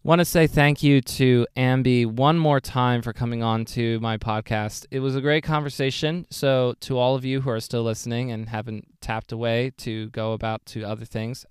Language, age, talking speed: English, 20-39, 210 wpm